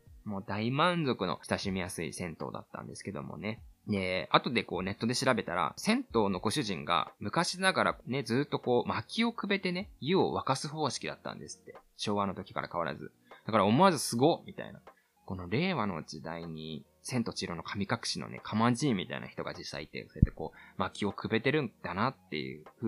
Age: 20-39